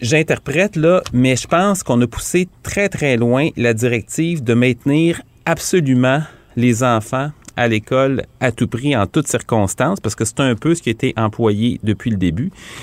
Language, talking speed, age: French, 180 wpm, 30-49